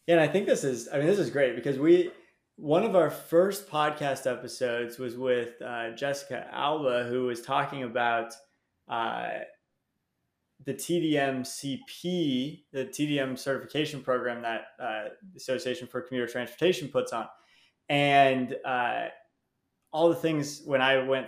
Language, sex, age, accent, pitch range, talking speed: English, male, 20-39, American, 125-145 Hz, 150 wpm